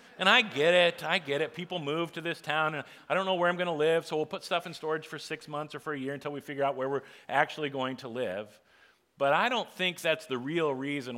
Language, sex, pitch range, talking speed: English, male, 135-165 Hz, 275 wpm